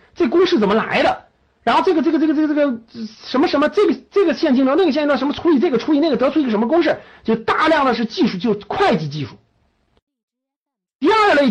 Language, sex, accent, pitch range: Chinese, male, native, 200-295 Hz